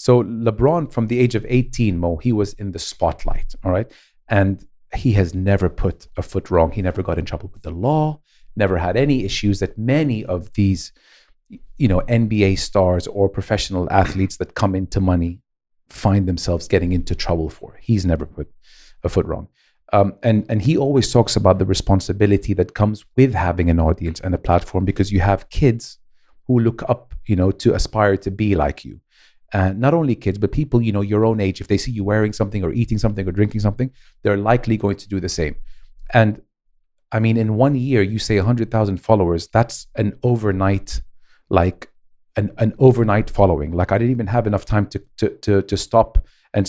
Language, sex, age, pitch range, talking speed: English, male, 40-59, 95-115 Hz, 205 wpm